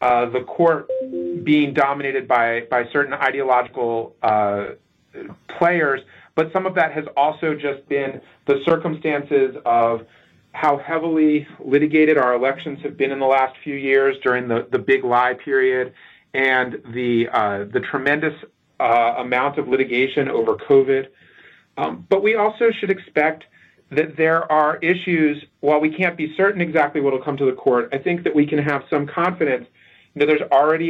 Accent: American